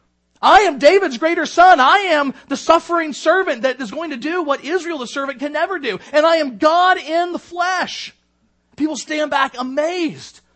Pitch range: 195-295 Hz